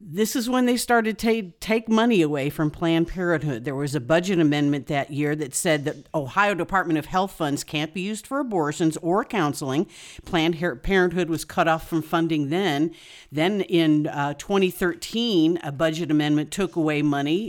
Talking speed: 180 wpm